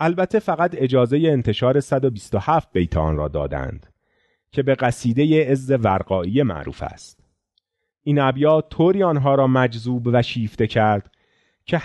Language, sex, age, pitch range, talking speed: Persian, male, 40-59, 100-155 Hz, 125 wpm